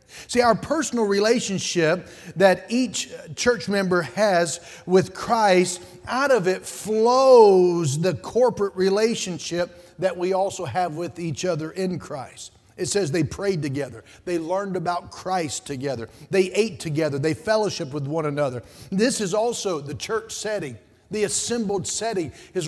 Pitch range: 150-205 Hz